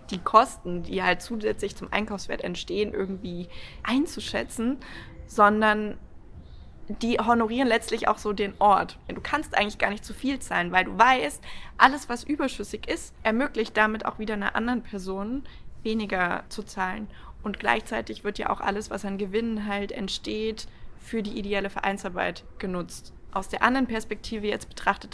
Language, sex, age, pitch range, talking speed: English, female, 20-39, 195-220 Hz, 155 wpm